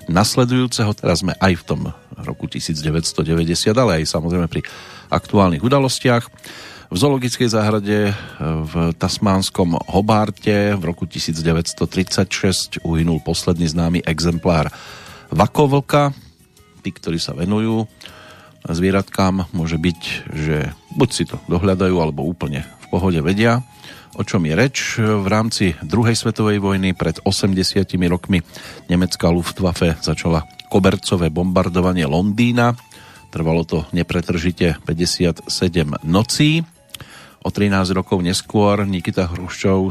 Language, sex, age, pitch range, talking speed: Slovak, male, 40-59, 85-105 Hz, 110 wpm